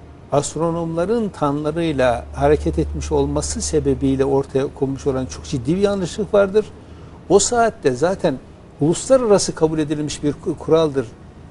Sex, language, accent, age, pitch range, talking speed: male, Turkish, native, 60-79, 130-175 Hz, 115 wpm